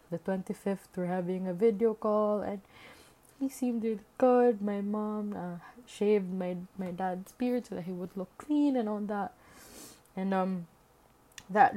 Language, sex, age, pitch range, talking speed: English, female, 20-39, 180-205 Hz, 165 wpm